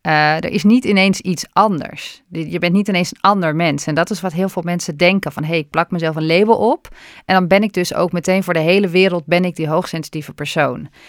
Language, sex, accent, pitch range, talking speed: Dutch, female, Dutch, 155-190 Hz, 250 wpm